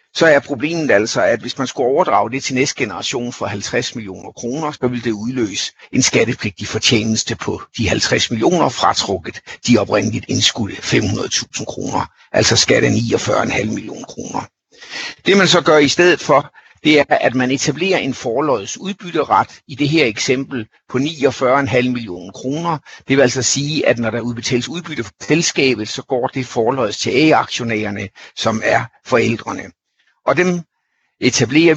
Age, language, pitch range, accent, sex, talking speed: 60-79, Danish, 115-150 Hz, native, male, 160 wpm